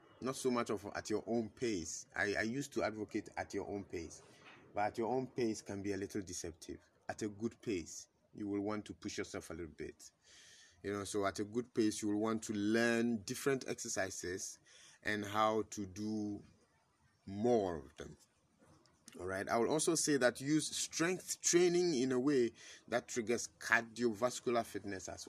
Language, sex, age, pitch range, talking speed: English, male, 30-49, 100-120 Hz, 185 wpm